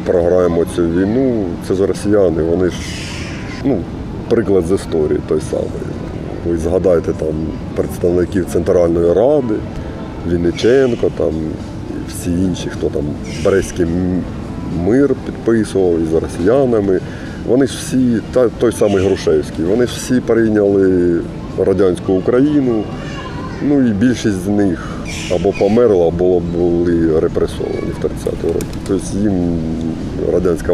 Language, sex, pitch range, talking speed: Ukrainian, male, 85-110 Hz, 115 wpm